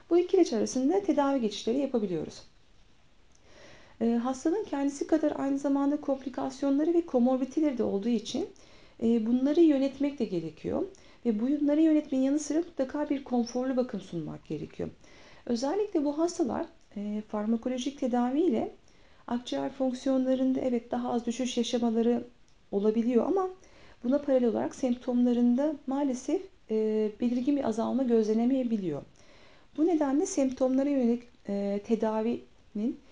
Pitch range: 215-285 Hz